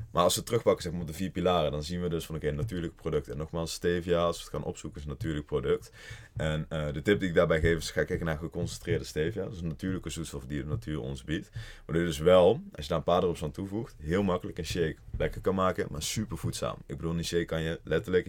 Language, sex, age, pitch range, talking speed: Dutch, male, 20-39, 75-90 Hz, 285 wpm